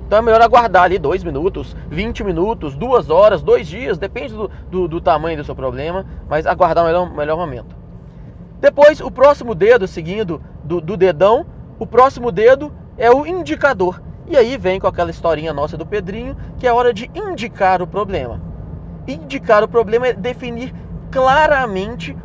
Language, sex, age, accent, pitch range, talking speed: Portuguese, male, 20-39, Brazilian, 175-245 Hz, 170 wpm